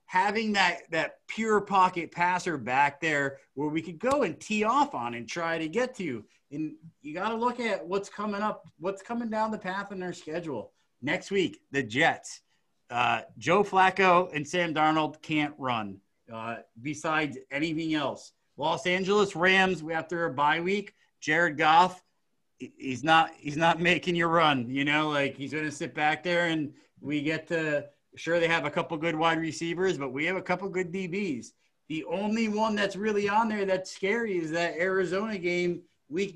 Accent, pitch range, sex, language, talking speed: American, 150-190 Hz, male, English, 190 wpm